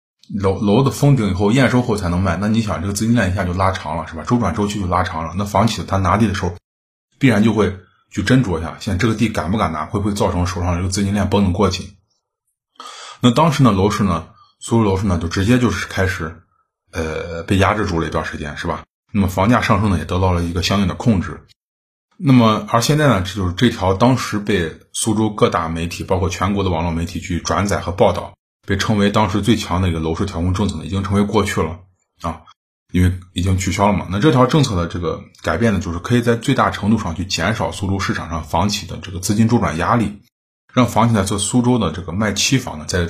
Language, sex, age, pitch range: Chinese, male, 20-39, 90-110 Hz